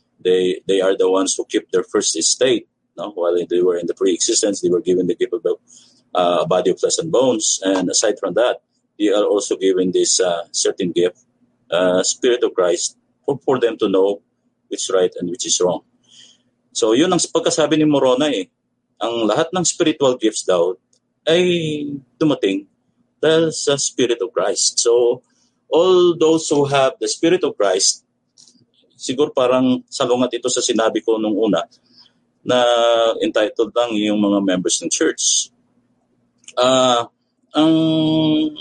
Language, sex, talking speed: Filipino, male, 165 wpm